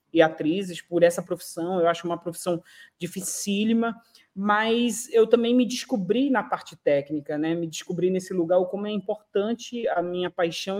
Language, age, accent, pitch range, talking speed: Portuguese, 20-39, Brazilian, 170-210 Hz, 160 wpm